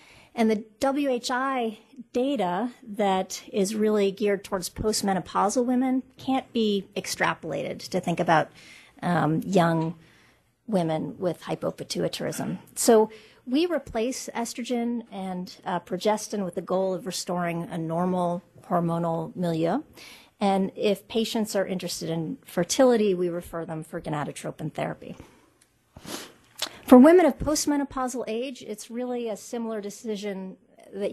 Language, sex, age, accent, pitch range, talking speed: English, female, 40-59, American, 175-230 Hz, 120 wpm